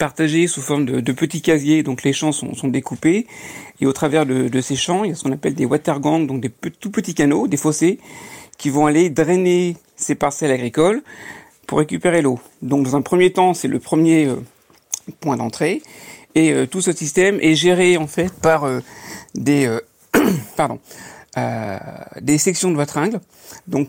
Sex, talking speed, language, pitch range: male, 185 wpm, French, 140-170 Hz